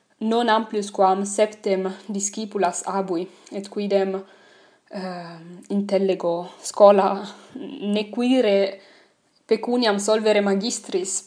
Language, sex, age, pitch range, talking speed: English, female, 20-39, 190-210 Hz, 80 wpm